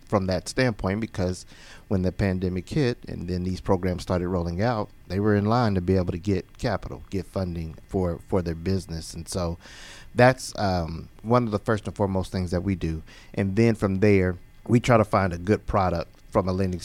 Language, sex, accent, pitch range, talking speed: English, male, American, 90-105 Hz, 210 wpm